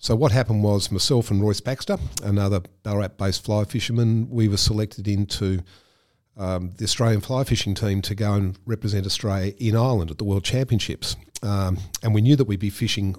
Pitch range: 95-115 Hz